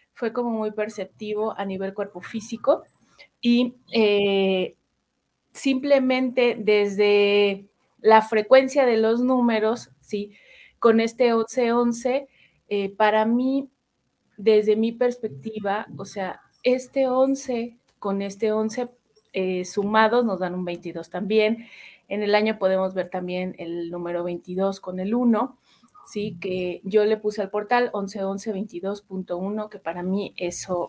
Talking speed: 125 wpm